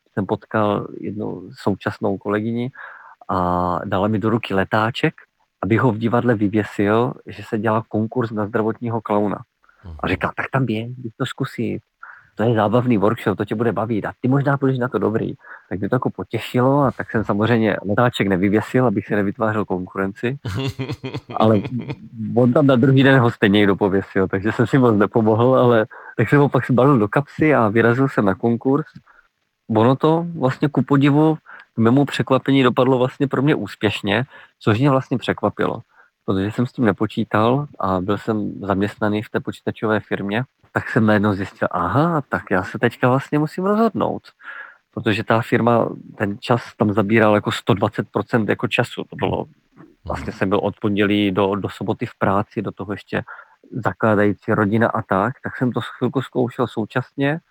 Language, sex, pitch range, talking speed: Czech, male, 105-130 Hz, 175 wpm